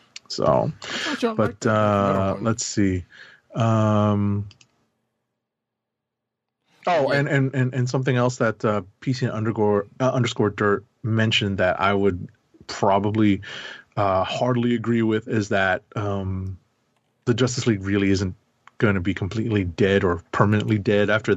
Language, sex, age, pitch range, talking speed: English, male, 30-49, 100-125 Hz, 130 wpm